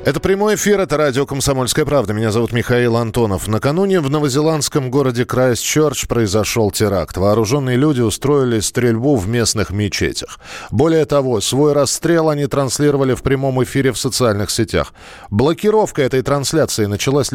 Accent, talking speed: native, 140 wpm